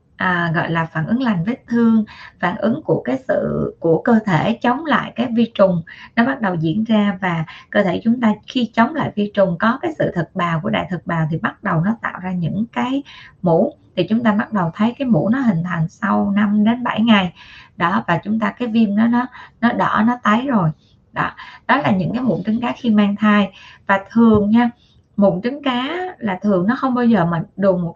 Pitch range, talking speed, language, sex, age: 185-235 Hz, 235 wpm, Vietnamese, female, 20-39